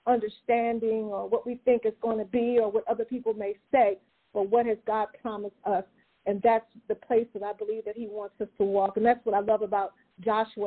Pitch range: 220-245 Hz